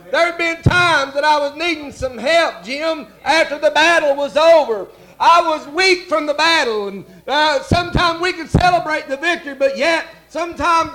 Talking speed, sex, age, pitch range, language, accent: 180 wpm, male, 50-69, 265-320 Hz, English, American